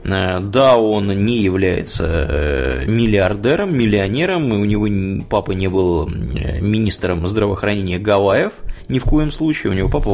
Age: 20-39